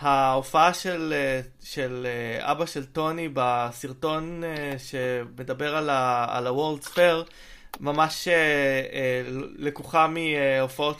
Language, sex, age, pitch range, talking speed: Hebrew, male, 20-39, 130-160 Hz, 80 wpm